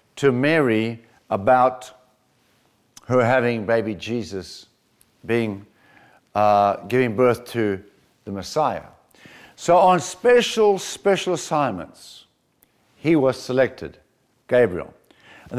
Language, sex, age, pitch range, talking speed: English, male, 60-79, 115-155 Hz, 90 wpm